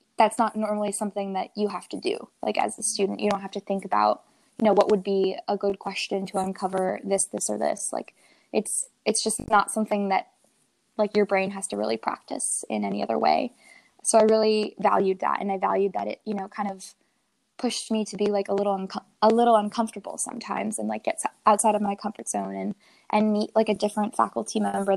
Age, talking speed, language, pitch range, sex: 10-29, 220 wpm, English, 200-225 Hz, female